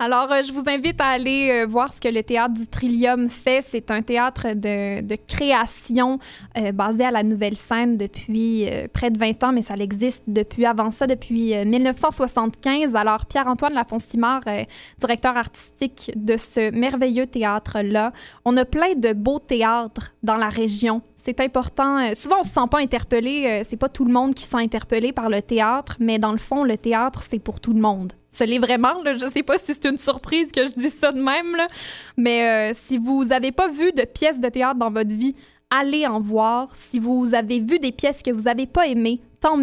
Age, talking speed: 20-39, 210 wpm